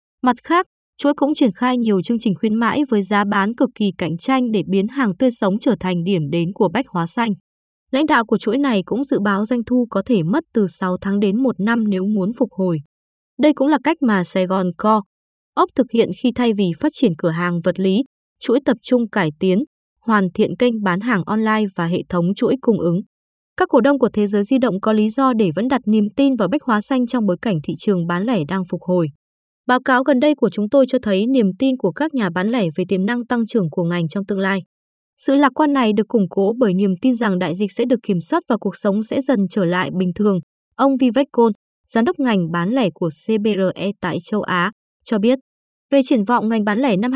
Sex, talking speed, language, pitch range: female, 250 wpm, Vietnamese, 195-250 Hz